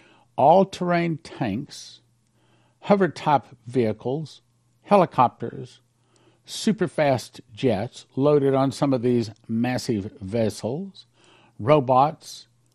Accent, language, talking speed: American, English, 70 wpm